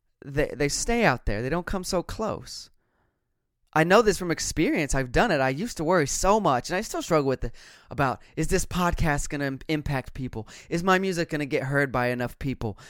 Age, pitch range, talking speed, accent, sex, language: 20-39, 125-175 Hz, 225 wpm, American, male, English